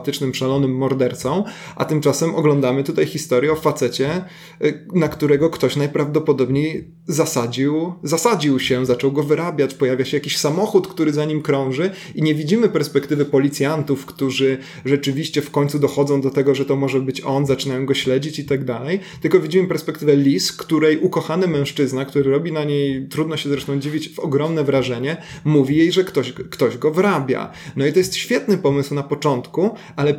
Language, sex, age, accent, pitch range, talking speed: Polish, male, 30-49, native, 140-165 Hz, 165 wpm